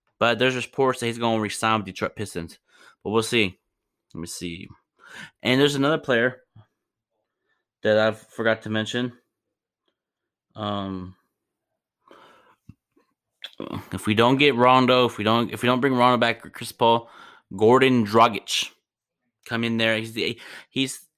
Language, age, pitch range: English, 20-39, 110-125 Hz